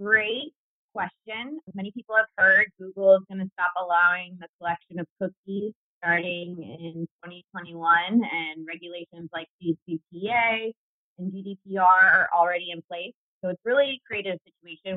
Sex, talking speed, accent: female, 145 wpm, American